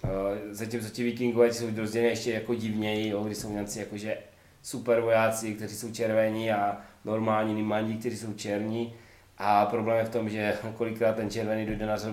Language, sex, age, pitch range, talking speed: Czech, male, 20-39, 110-130 Hz, 160 wpm